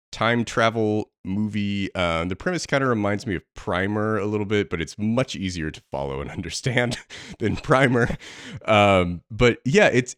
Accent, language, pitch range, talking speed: American, English, 85-125 Hz, 170 wpm